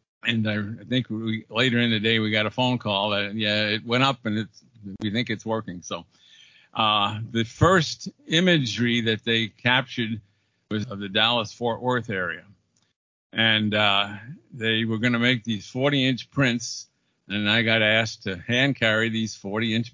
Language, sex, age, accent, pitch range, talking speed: English, male, 50-69, American, 105-125 Hz, 160 wpm